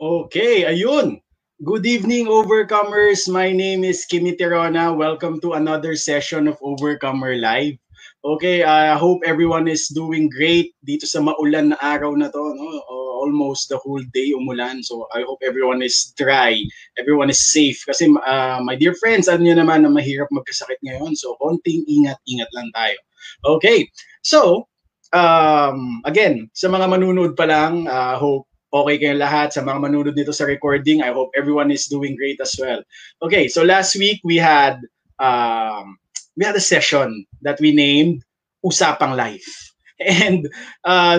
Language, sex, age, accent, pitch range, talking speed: English, male, 20-39, Filipino, 140-180 Hz, 160 wpm